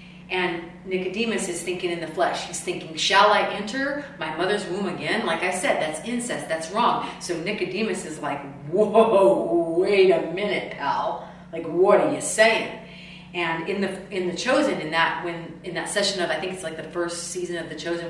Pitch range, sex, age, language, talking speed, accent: 170-200 Hz, female, 30-49, English, 200 wpm, American